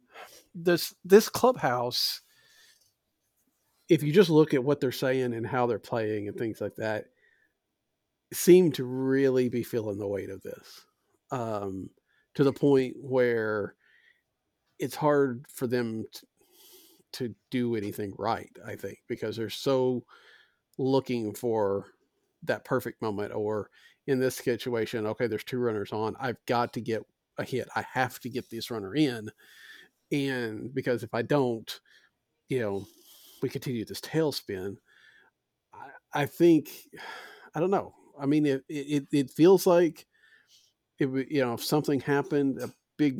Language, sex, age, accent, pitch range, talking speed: English, male, 50-69, American, 115-155 Hz, 150 wpm